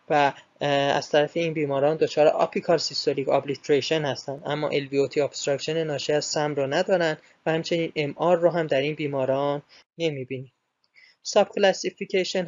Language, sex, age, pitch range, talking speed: Persian, male, 20-39, 145-165 Hz, 140 wpm